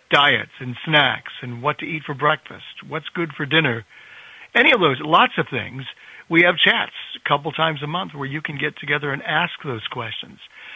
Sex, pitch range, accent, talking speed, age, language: male, 130-160 Hz, American, 200 wpm, 60-79, English